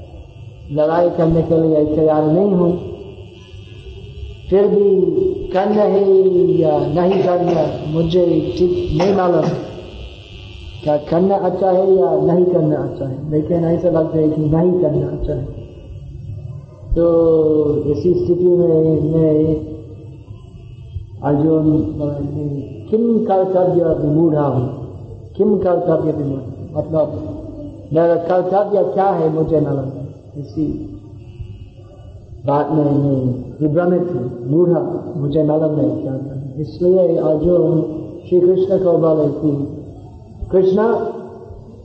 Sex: male